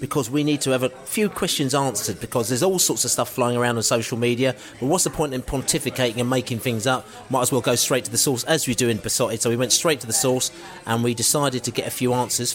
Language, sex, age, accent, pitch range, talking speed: English, male, 30-49, British, 115-145 Hz, 275 wpm